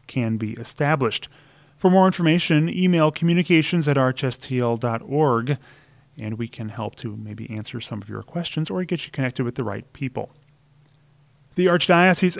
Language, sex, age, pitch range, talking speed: English, male, 30-49, 120-150 Hz, 150 wpm